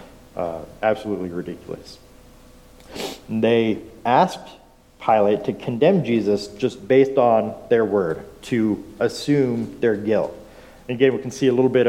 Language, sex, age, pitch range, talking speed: English, male, 40-59, 100-130 Hz, 135 wpm